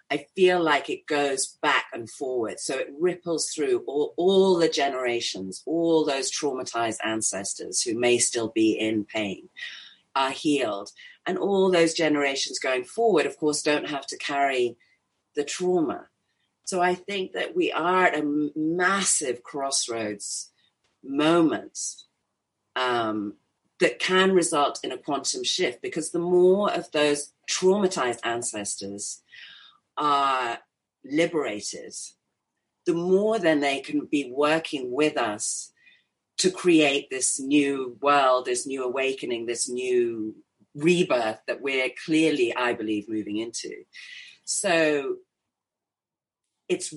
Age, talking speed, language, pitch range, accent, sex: 40-59, 125 wpm, English, 130-185 Hz, British, female